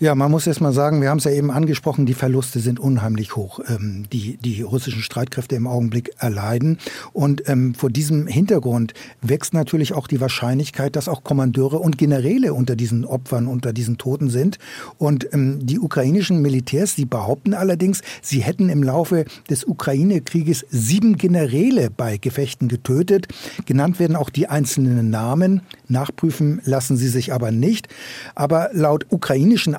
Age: 60-79